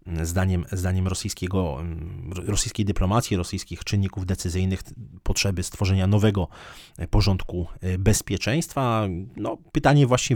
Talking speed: 80 wpm